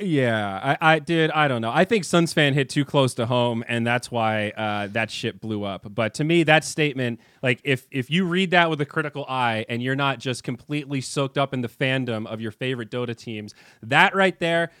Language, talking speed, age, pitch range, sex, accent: English, 230 wpm, 30-49, 120-155 Hz, male, American